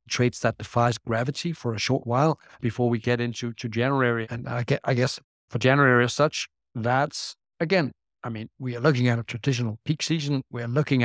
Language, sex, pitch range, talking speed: English, male, 120-135 Hz, 185 wpm